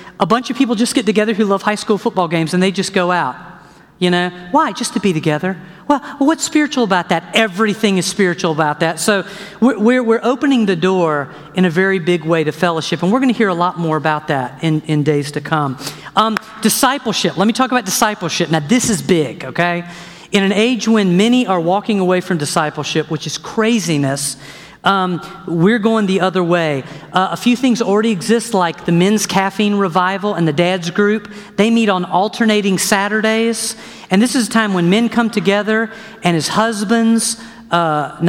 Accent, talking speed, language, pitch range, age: American, 200 wpm, English, 175-225 Hz, 50-69